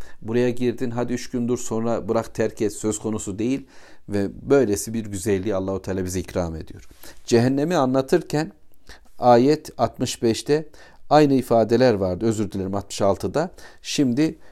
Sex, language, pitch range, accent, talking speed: male, Turkish, 100-130 Hz, native, 130 wpm